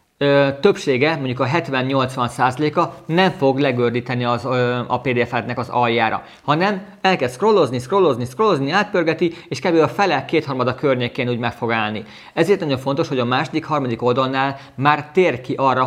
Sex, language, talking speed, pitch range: male, Hungarian, 165 wpm, 120-150 Hz